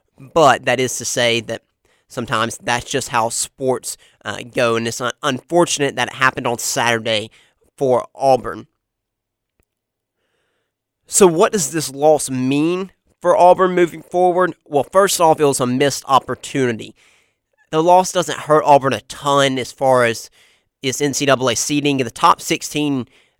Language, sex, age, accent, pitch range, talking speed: English, male, 30-49, American, 125-150 Hz, 145 wpm